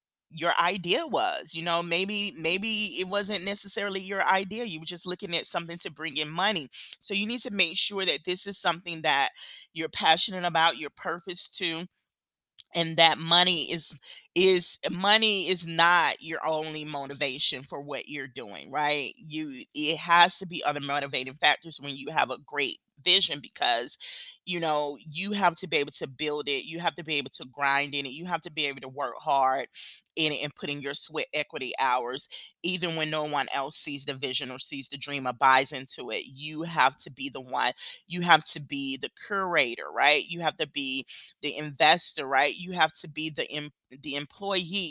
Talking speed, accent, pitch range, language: 200 wpm, American, 150-195 Hz, English